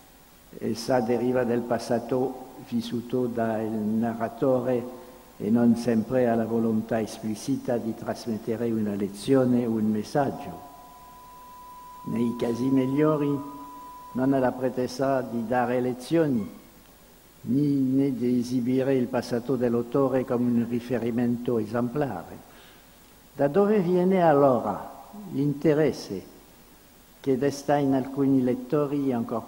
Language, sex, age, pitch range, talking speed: Italian, male, 60-79, 120-140 Hz, 105 wpm